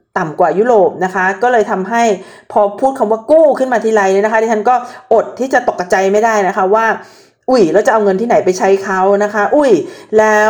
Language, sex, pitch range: Thai, female, 200-250 Hz